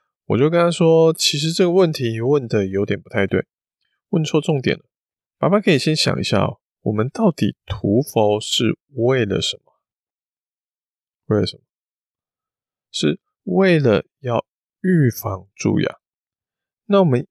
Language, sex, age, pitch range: Chinese, male, 20-39, 105-155 Hz